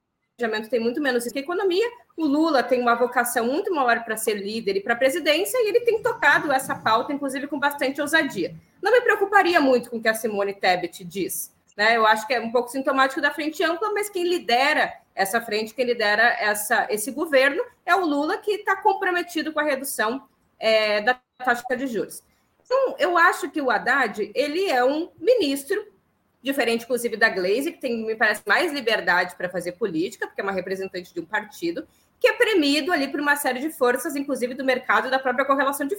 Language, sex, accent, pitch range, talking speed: Portuguese, female, Brazilian, 235-355 Hz, 205 wpm